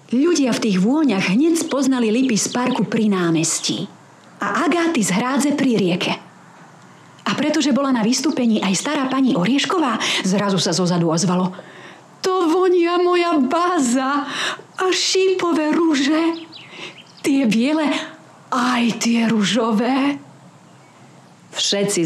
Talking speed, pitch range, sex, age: 115 wpm, 170-265 Hz, female, 40-59